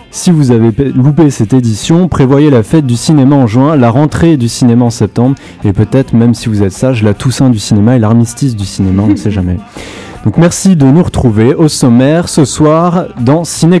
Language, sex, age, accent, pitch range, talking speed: French, male, 30-49, French, 110-140 Hz, 210 wpm